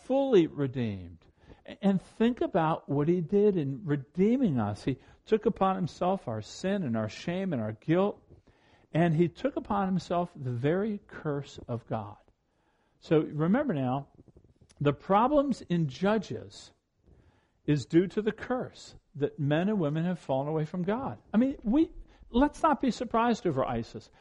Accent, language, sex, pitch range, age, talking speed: American, English, male, 150-235 Hz, 50-69, 155 wpm